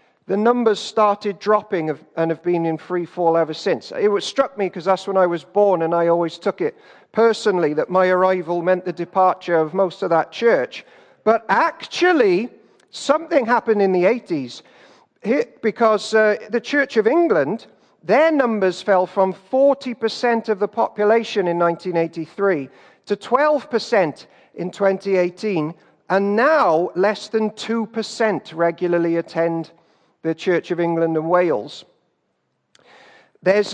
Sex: male